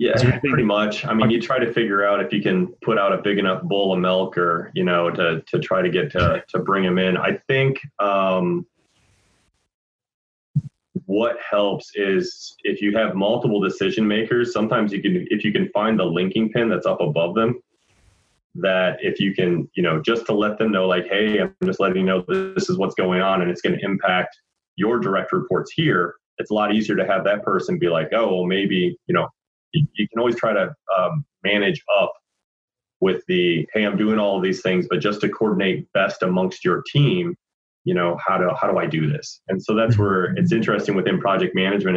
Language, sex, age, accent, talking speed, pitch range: English, male, 30-49, American, 215 wpm, 90-115 Hz